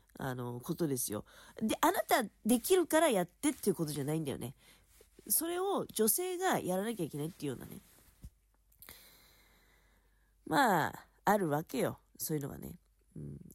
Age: 40-59